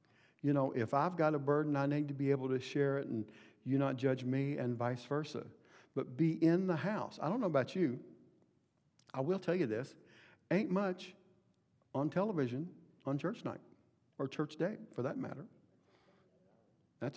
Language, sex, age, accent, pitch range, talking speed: English, male, 60-79, American, 115-145 Hz, 180 wpm